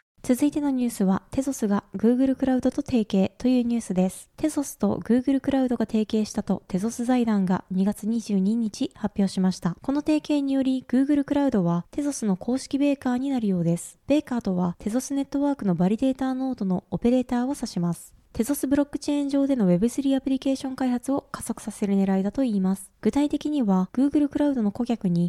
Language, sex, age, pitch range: Japanese, female, 20-39, 205-275 Hz